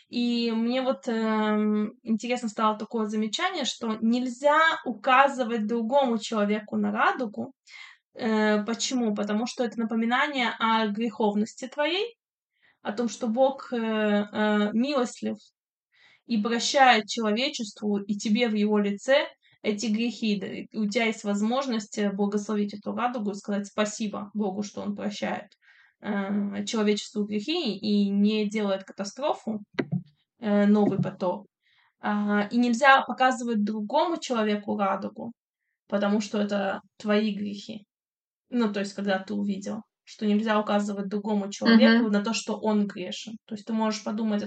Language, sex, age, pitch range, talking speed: Russian, female, 20-39, 210-240 Hz, 130 wpm